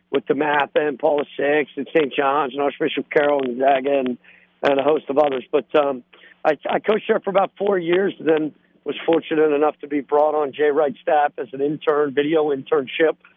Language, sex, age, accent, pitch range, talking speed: English, male, 50-69, American, 145-165 Hz, 210 wpm